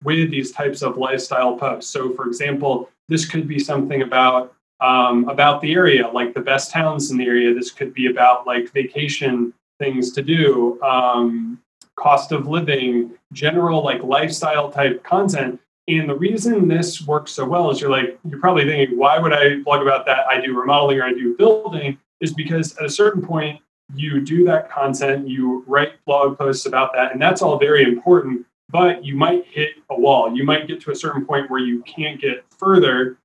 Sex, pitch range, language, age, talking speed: male, 130-160 Hz, English, 30-49, 195 wpm